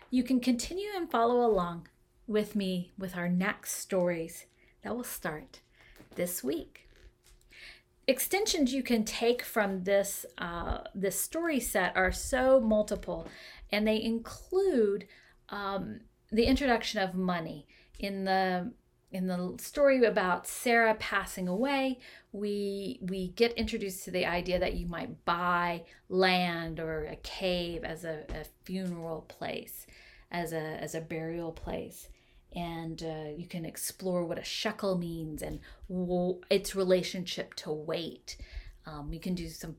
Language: English